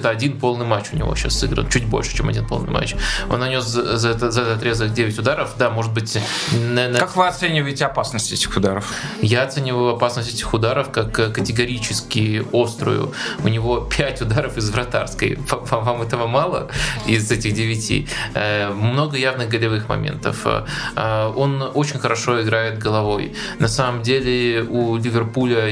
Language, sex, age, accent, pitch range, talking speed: Russian, male, 20-39, native, 110-125 Hz, 145 wpm